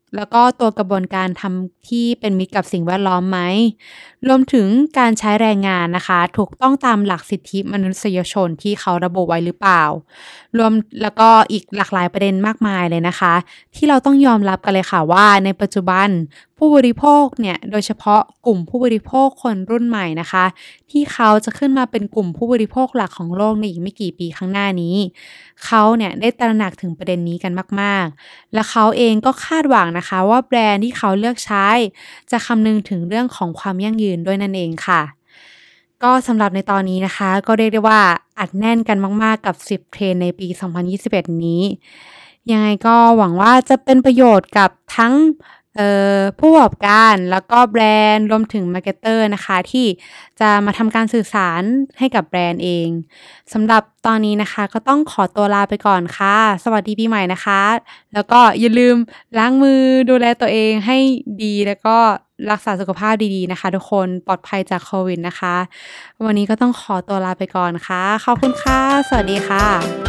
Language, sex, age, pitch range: Thai, female, 20-39, 190-230 Hz